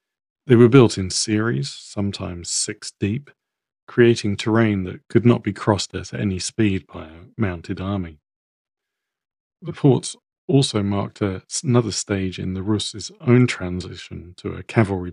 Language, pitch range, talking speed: English, 95-115 Hz, 145 wpm